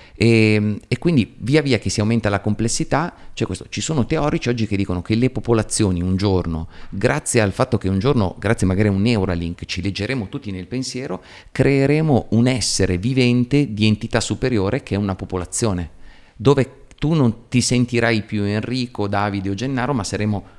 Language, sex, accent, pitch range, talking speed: Italian, male, native, 95-125 Hz, 185 wpm